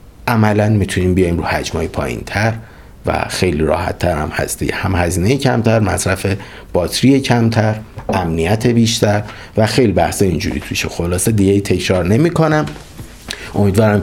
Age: 50-69